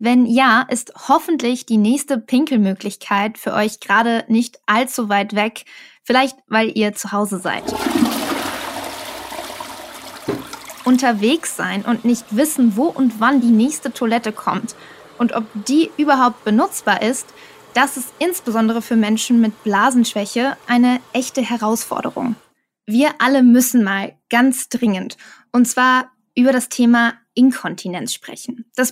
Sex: female